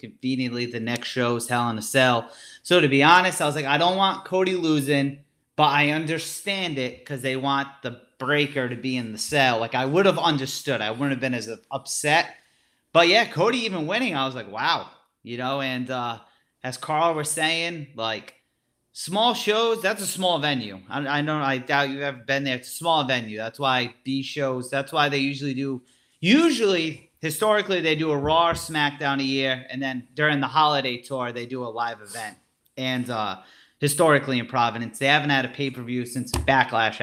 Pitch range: 125-155 Hz